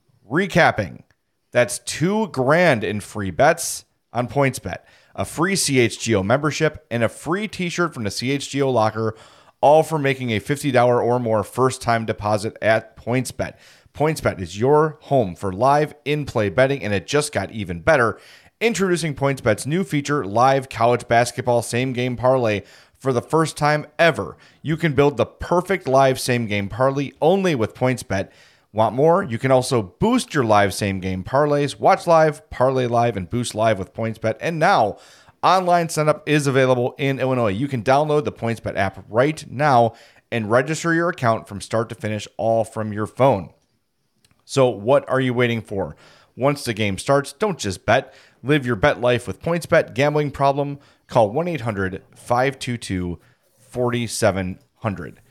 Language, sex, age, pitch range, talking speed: English, male, 30-49, 110-145 Hz, 160 wpm